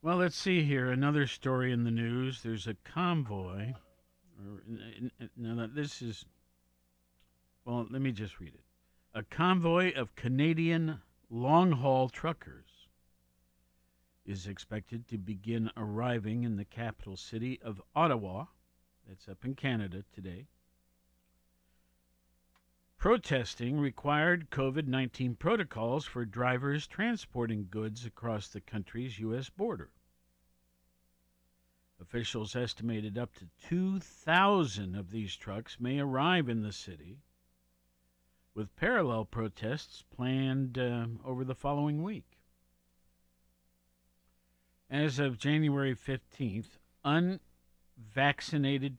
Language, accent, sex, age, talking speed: English, American, male, 50-69, 100 wpm